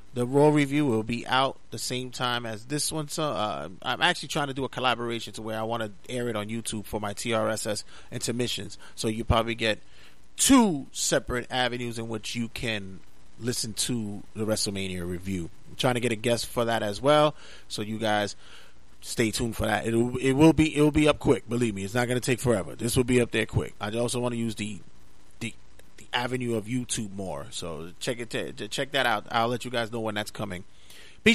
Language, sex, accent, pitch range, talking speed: English, male, American, 110-140 Hz, 220 wpm